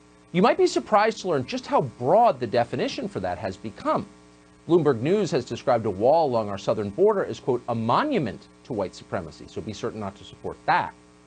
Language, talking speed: English, 210 wpm